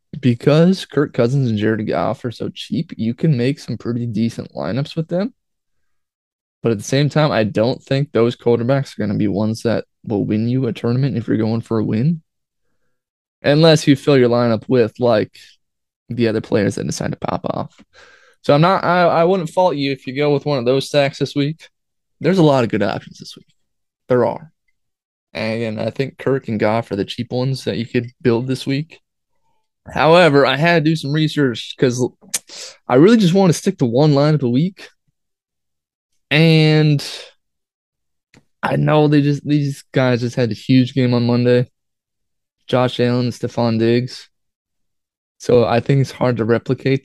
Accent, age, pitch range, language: American, 20-39, 120-150 Hz, English